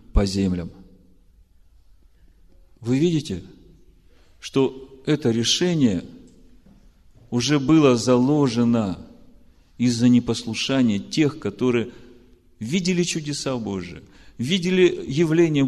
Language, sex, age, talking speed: Russian, male, 40-59, 75 wpm